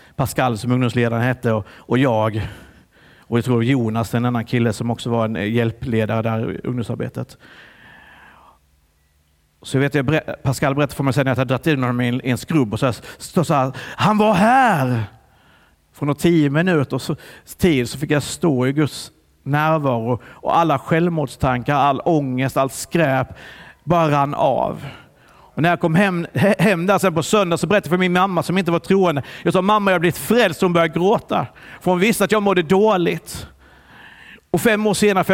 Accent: native